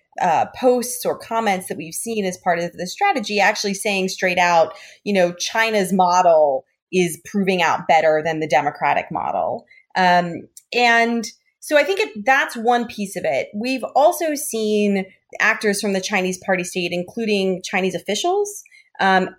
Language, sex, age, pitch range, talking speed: English, female, 30-49, 185-235 Hz, 160 wpm